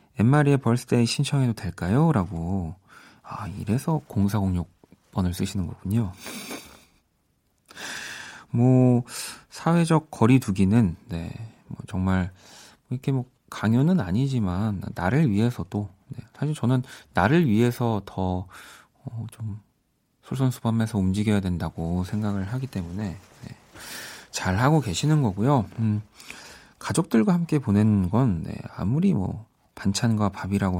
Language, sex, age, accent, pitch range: Korean, male, 40-59, native, 95-130 Hz